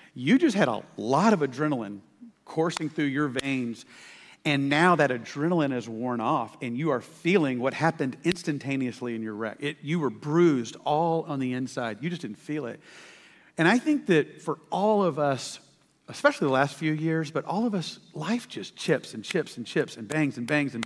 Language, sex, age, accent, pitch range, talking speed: English, male, 40-59, American, 130-160 Hz, 200 wpm